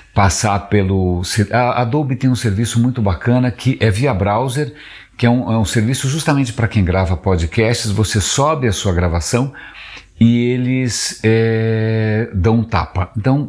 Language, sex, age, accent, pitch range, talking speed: Spanish, male, 60-79, Brazilian, 95-120 Hz, 145 wpm